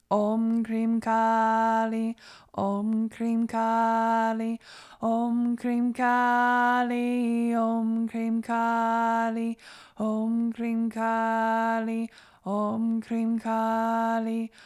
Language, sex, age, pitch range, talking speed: English, female, 20-39, 225-235 Hz, 75 wpm